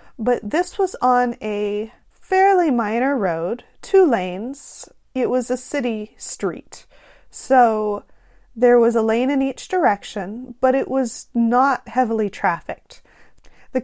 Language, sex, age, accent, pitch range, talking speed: English, female, 30-49, American, 210-265 Hz, 130 wpm